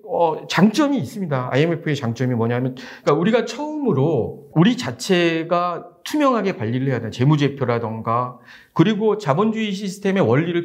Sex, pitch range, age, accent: male, 140-190 Hz, 40-59, native